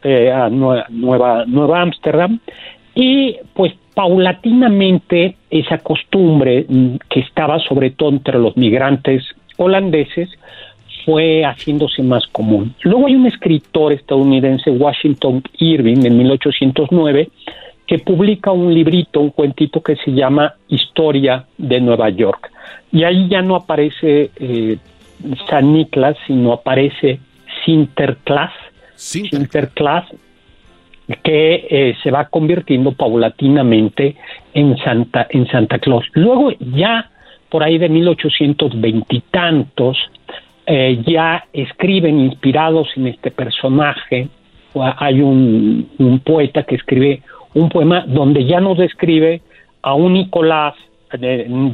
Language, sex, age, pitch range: Spanish, male, 50-69, 130-165 Hz